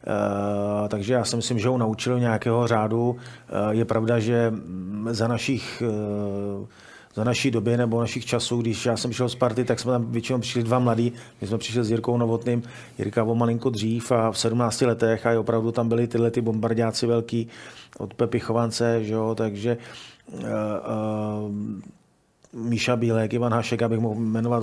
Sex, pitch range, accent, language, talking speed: male, 115-120 Hz, native, Czech, 180 wpm